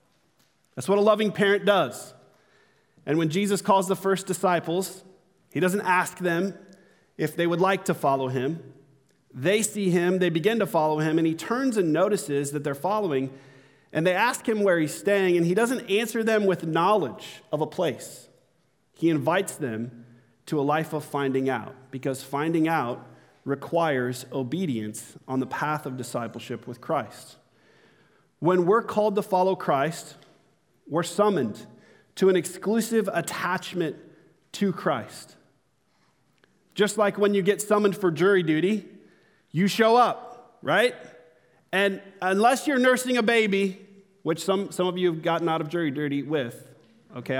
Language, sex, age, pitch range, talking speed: English, male, 40-59, 145-200 Hz, 155 wpm